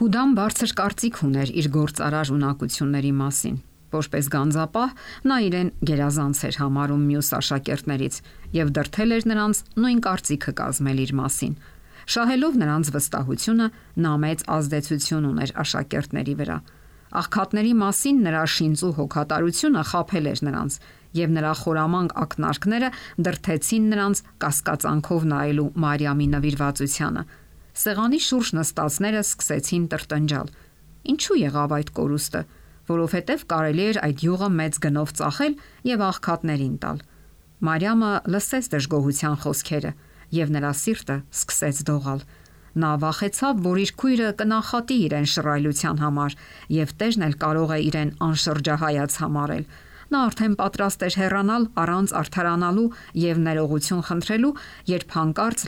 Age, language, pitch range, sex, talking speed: 50-69, English, 145-200 Hz, female, 95 wpm